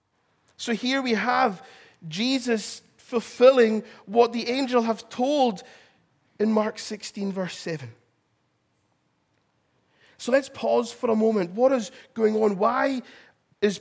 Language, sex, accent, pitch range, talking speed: English, male, British, 185-240 Hz, 120 wpm